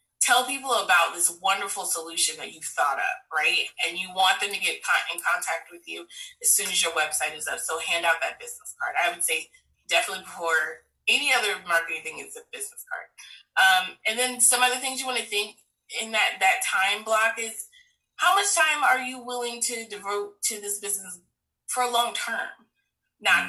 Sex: female